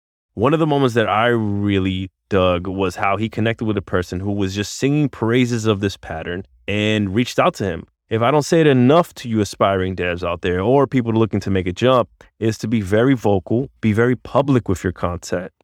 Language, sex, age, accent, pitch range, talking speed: English, male, 20-39, American, 90-115 Hz, 225 wpm